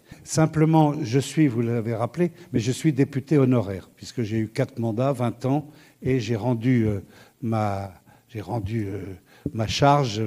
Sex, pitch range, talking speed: male, 120-150 Hz, 165 wpm